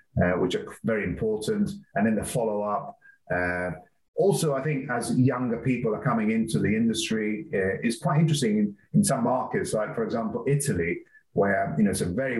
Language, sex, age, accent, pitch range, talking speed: English, male, 30-49, British, 100-150 Hz, 190 wpm